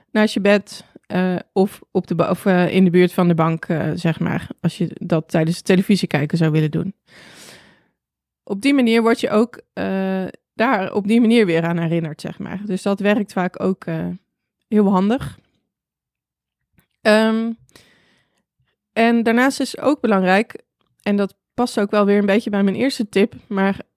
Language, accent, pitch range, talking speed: Dutch, Dutch, 185-230 Hz, 180 wpm